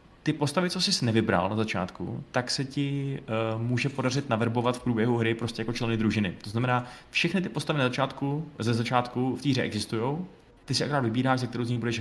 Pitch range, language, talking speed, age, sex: 110-125 Hz, Czech, 210 wpm, 20-39, male